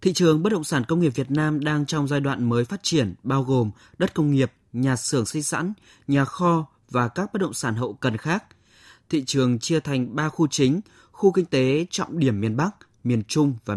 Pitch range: 120-155 Hz